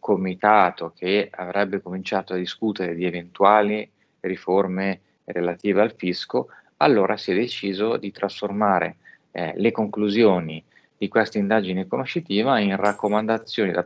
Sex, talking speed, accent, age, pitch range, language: male, 115 wpm, native, 30-49, 90-105 Hz, Italian